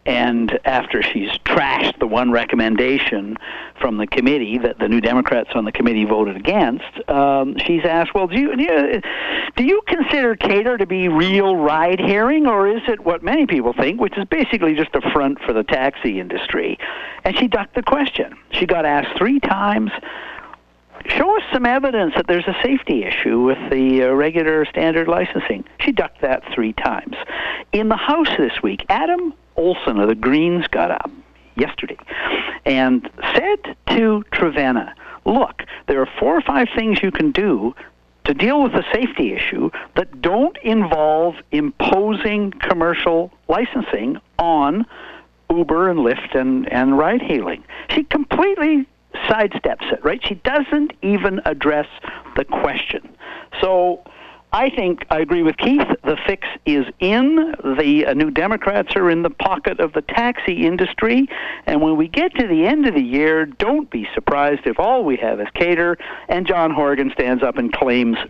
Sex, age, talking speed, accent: male, 60-79, 165 wpm, American